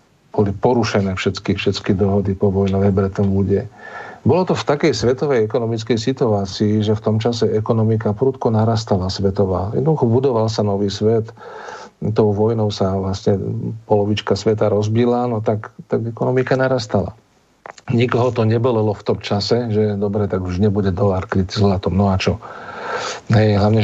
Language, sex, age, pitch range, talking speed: Czech, male, 50-69, 100-110 Hz, 155 wpm